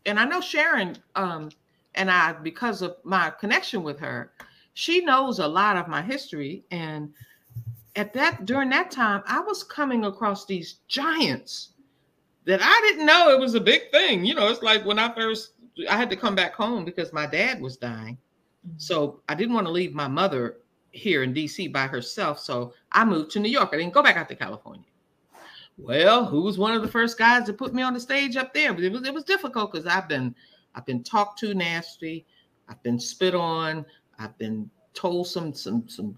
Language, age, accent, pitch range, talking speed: English, 40-59, American, 140-225 Hz, 205 wpm